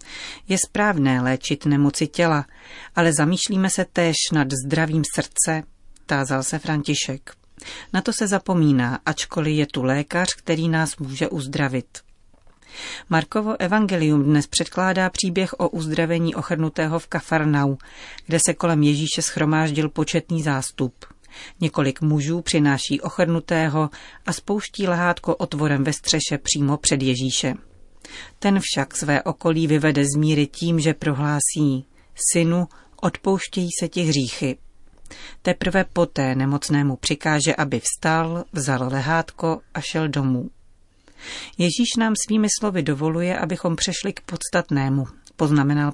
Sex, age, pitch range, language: female, 40-59, 140-175 Hz, Czech